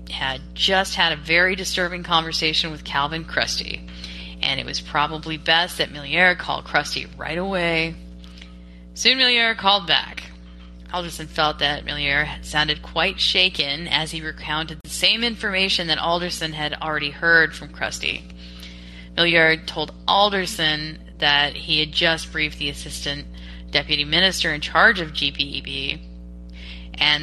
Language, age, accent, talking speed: English, 10-29, American, 135 wpm